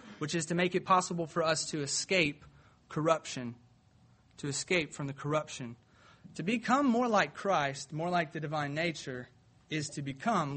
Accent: American